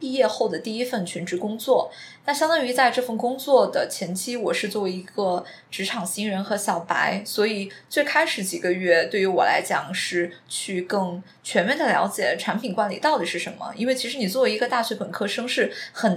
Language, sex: Chinese, female